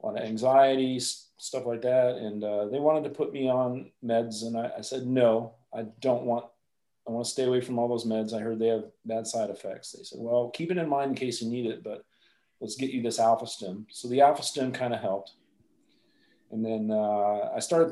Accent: American